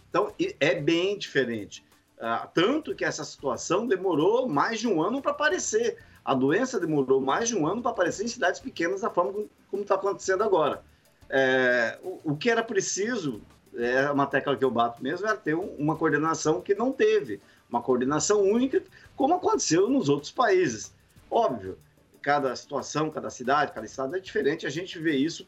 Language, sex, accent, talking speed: Portuguese, male, Brazilian, 175 wpm